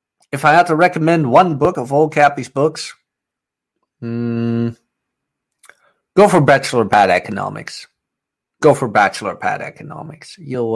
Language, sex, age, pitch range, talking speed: English, male, 30-49, 115-155 Hz, 130 wpm